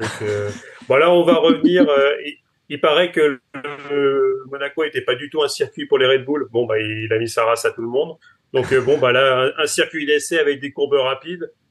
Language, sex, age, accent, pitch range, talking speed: French, male, 30-49, French, 115-145 Hz, 245 wpm